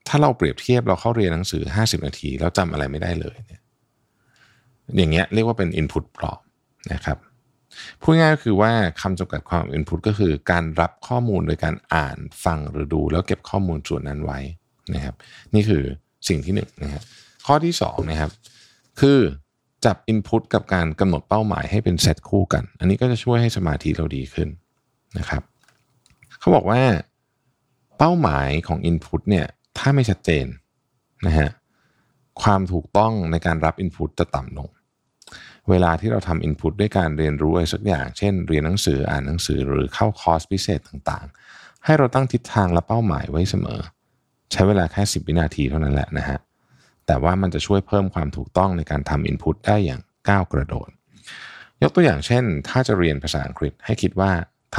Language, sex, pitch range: Thai, male, 75-105 Hz